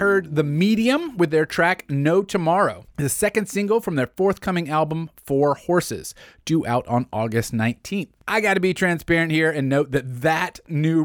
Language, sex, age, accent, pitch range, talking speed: English, male, 30-49, American, 130-185 Hz, 175 wpm